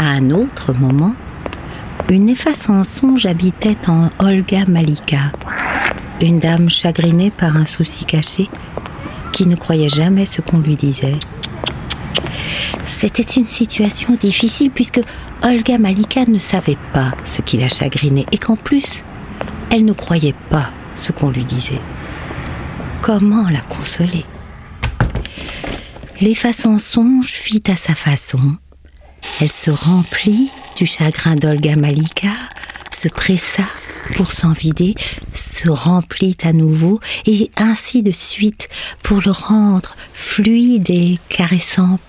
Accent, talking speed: French, 125 wpm